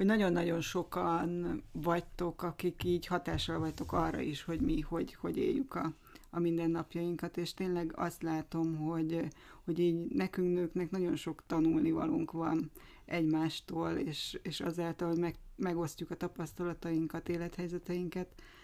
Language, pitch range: Hungarian, 160-175 Hz